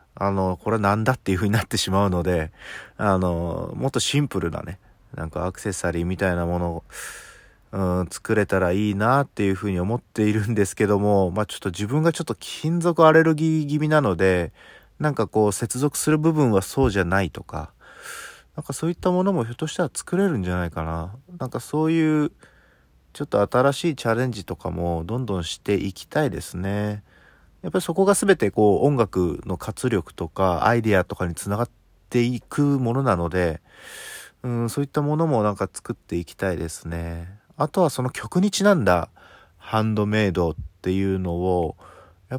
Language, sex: Japanese, male